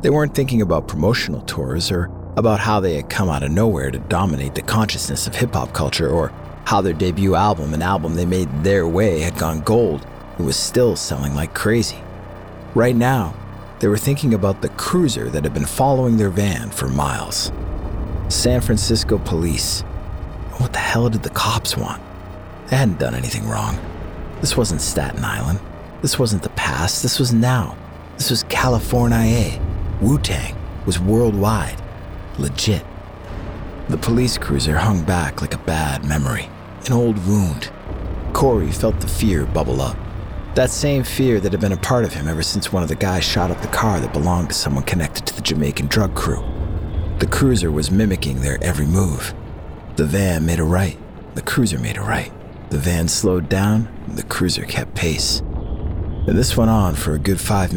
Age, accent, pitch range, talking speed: 50-69, American, 80-110 Hz, 180 wpm